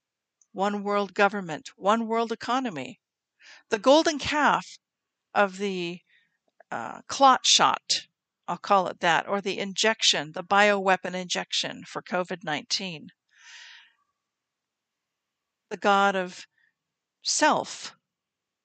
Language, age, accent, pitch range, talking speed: English, 50-69, American, 195-245 Hz, 95 wpm